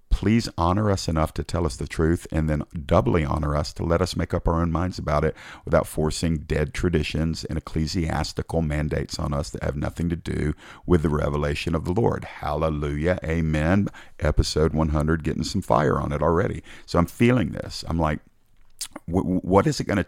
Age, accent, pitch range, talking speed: 50-69, American, 75-90 Hz, 195 wpm